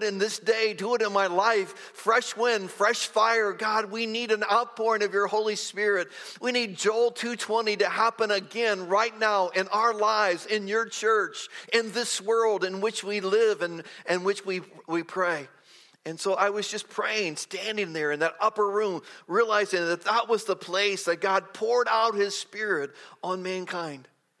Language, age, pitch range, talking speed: English, 50-69, 190-225 Hz, 185 wpm